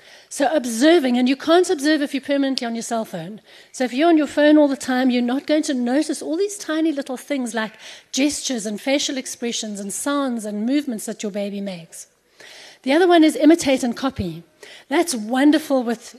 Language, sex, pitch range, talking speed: English, female, 215-275 Hz, 205 wpm